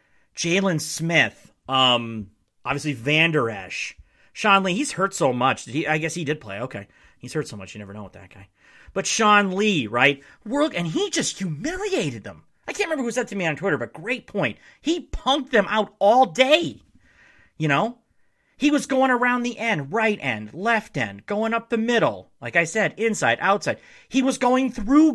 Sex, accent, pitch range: male, American, 130-215 Hz